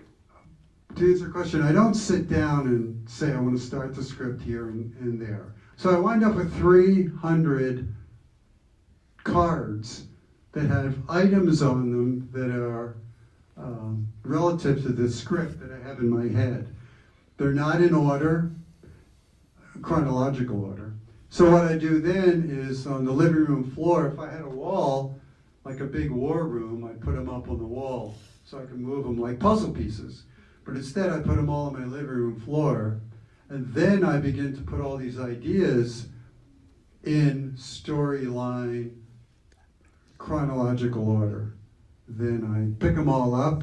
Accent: American